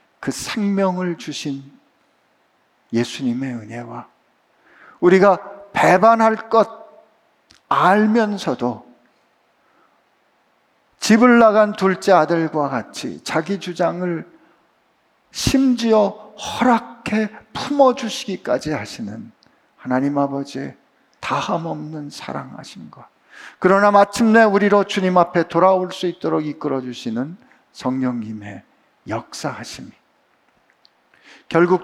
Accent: native